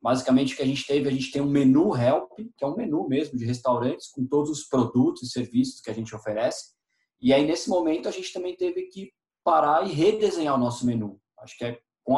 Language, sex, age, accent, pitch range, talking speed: Portuguese, male, 20-39, Brazilian, 125-155 Hz, 235 wpm